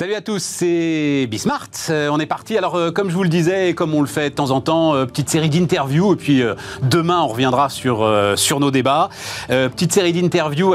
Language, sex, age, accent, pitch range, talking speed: French, male, 40-59, French, 120-170 Hz, 245 wpm